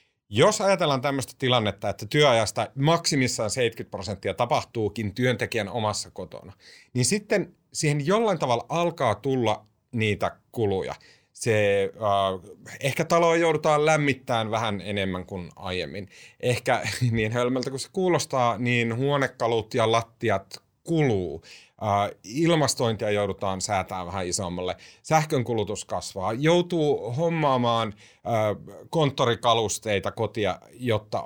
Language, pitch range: Finnish, 105-145 Hz